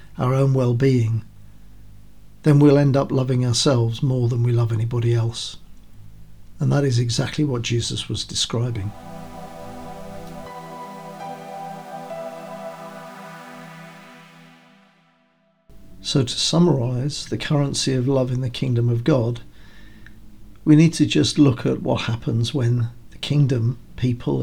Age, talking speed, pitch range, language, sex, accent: 50-69, 115 wpm, 105-140 Hz, English, male, British